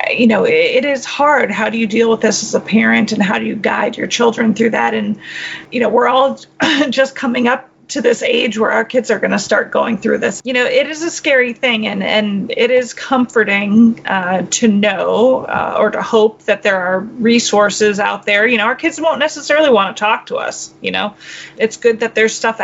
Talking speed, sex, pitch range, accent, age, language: 230 wpm, female, 205-240 Hz, American, 30-49, English